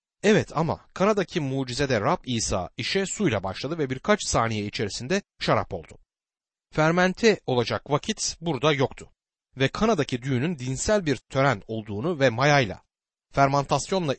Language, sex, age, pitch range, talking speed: Turkish, male, 60-79, 115-175 Hz, 125 wpm